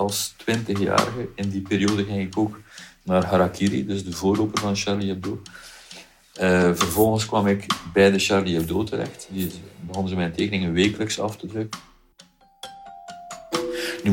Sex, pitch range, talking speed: male, 90-105 Hz, 150 wpm